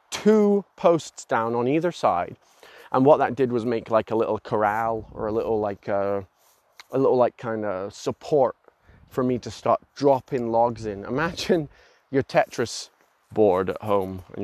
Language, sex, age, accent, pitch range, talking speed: English, male, 20-39, British, 100-125 Hz, 170 wpm